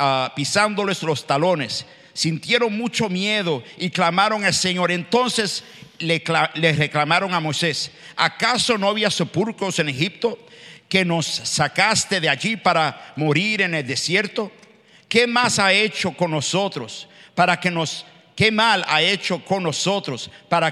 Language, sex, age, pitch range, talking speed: English, male, 50-69, 165-220 Hz, 145 wpm